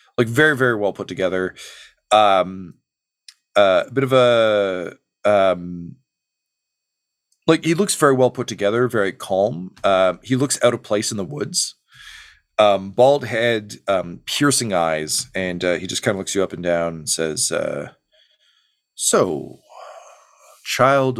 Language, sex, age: English, male, 40-59